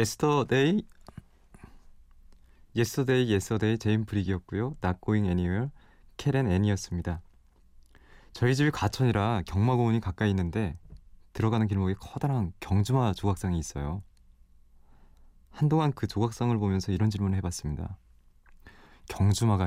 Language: Korean